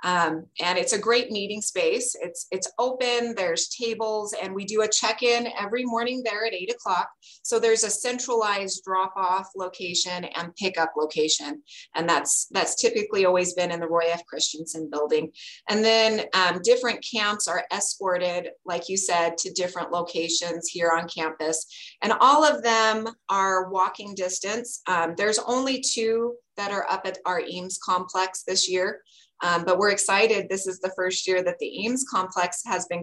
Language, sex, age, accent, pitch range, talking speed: English, female, 30-49, American, 175-225 Hz, 175 wpm